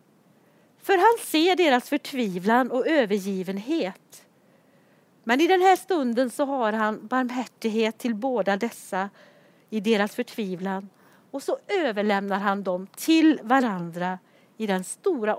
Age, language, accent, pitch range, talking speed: 40-59, Swedish, native, 195-260 Hz, 125 wpm